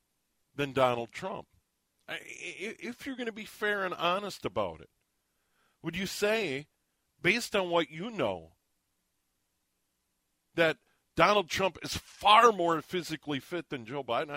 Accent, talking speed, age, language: American, 130 wpm, 40-59, English